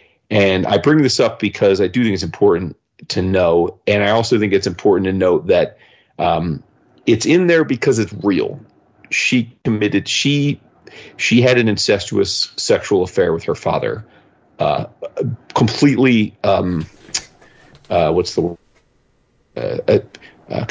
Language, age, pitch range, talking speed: English, 40-59, 95-145 Hz, 155 wpm